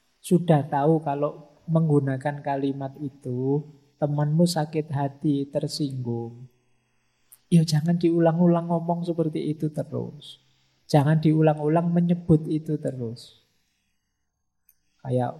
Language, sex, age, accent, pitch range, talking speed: English, male, 20-39, Indonesian, 125-160 Hz, 90 wpm